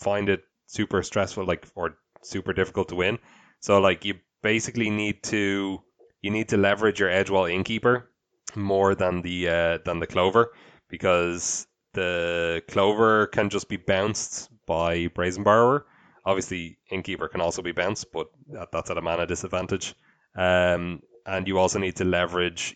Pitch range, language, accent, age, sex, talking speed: 90-105 Hz, English, Irish, 20-39, male, 160 wpm